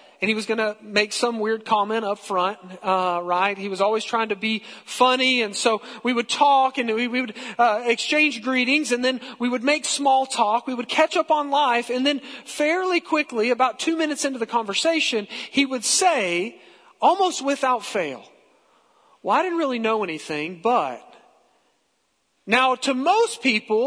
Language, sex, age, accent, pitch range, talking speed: English, male, 40-59, American, 235-295 Hz, 180 wpm